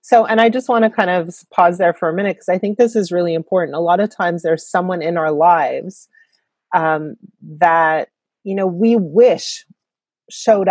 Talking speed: 200 wpm